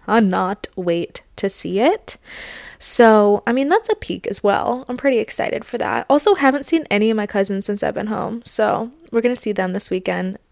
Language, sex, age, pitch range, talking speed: English, female, 20-39, 195-245 Hz, 205 wpm